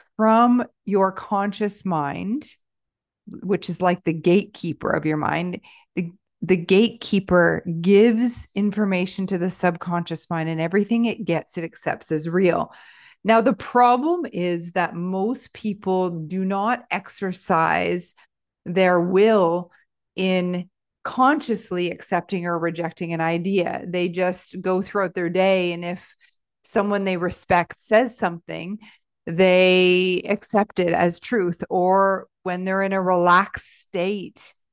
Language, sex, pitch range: English, female, 175-210 Hz